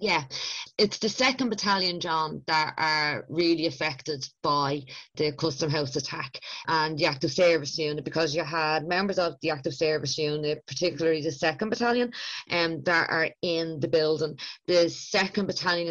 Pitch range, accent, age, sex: 155-180 Hz, Irish, 20-39, female